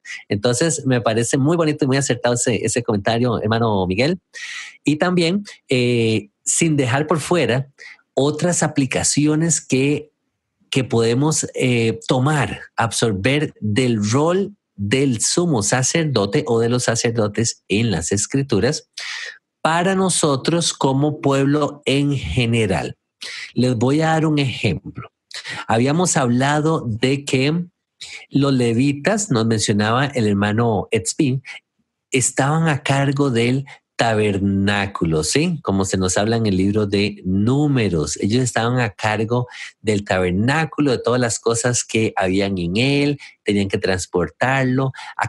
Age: 50-69